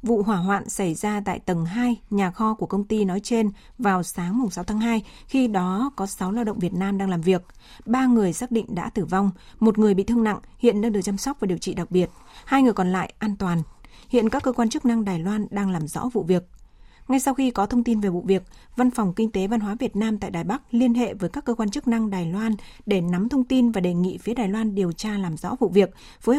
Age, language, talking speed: 20-39, Vietnamese, 270 wpm